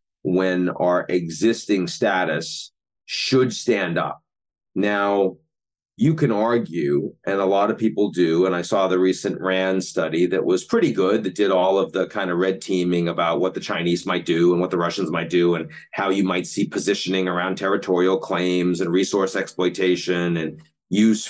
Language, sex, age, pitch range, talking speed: English, male, 40-59, 90-105 Hz, 180 wpm